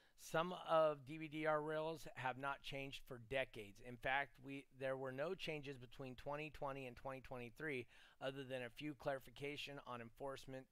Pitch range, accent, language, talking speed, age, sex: 125-155 Hz, American, English, 150 wpm, 30-49, male